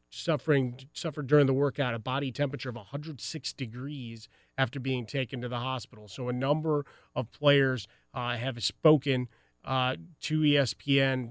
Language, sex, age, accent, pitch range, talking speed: English, male, 30-49, American, 125-145 Hz, 150 wpm